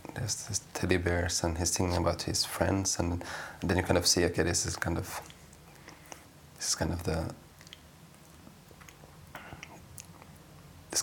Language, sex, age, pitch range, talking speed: Finnish, male, 30-49, 85-95 Hz, 145 wpm